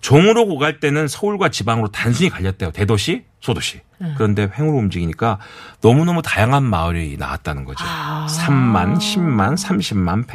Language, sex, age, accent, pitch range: Korean, male, 40-59, native, 95-140 Hz